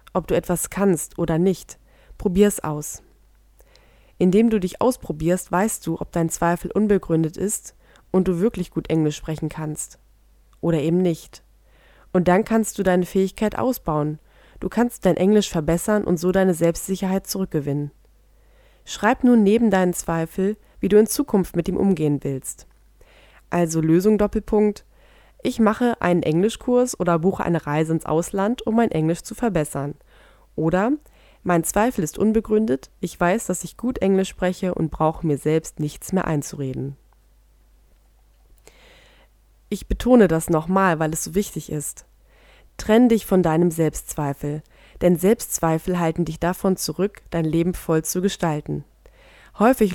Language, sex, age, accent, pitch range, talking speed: German, female, 20-39, German, 160-205 Hz, 145 wpm